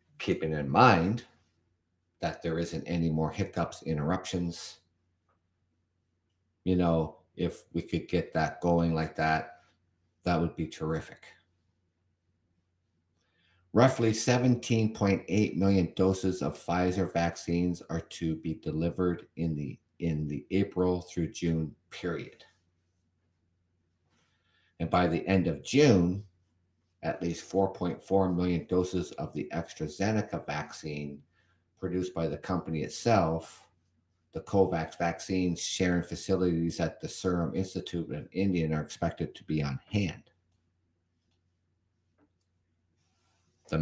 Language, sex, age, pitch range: English, male, 50-69, 85-95 Hz